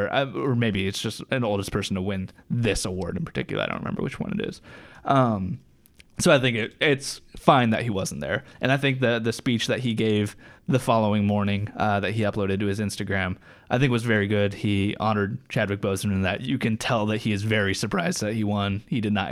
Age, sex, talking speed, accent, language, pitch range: 20-39, male, 230 wpm, American, English, 100-115 Hz